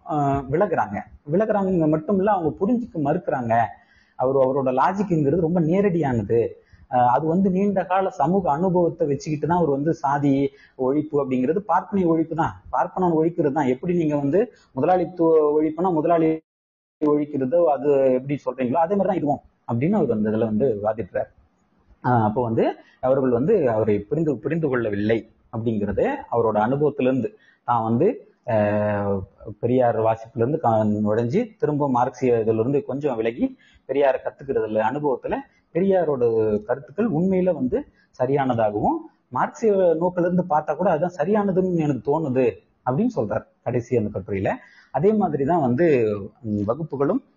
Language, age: Tamil, 30-49